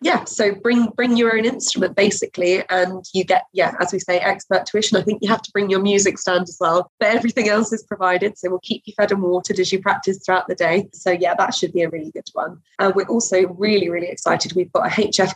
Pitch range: 175-200 Hz